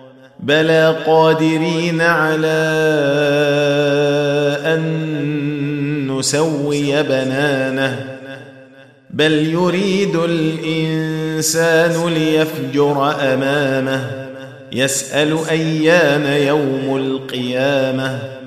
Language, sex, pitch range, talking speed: Arabic, male, 140-165 Hz, 50 wpm